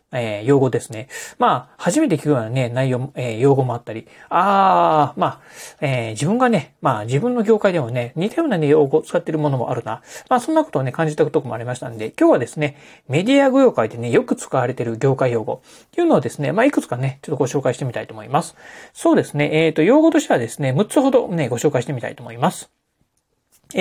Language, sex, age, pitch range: Japanese, male, 30-49, 130-195 Hz